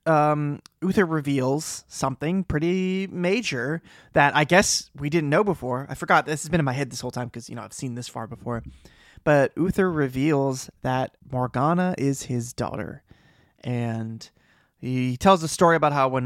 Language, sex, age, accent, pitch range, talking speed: English, male, 20-39, American, 120-155 Hz, 175 wpm